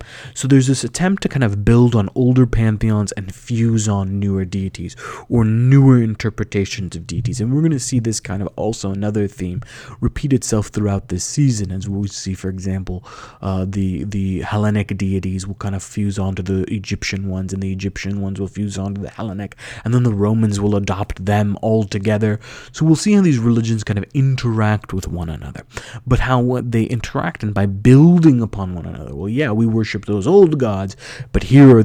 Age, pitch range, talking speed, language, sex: 20-39, 95-125 Hz, 200 wpm, English, male